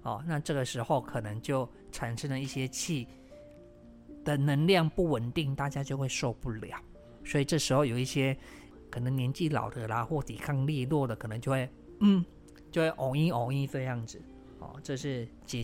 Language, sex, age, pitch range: Chinese, male, 20-39, 120-150 Hz